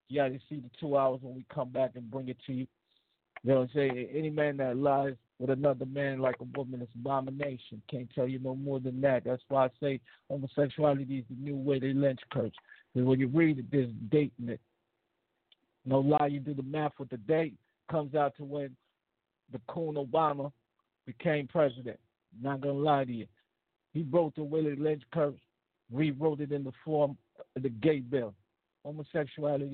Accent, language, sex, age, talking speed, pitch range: American, English, male, 50-69, 190 wpm, 130-150 Hz